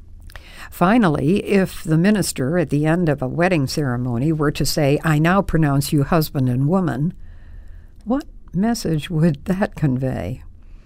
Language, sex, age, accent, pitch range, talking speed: English, female, 60-79, American, 125-165 Hz, 145 wpm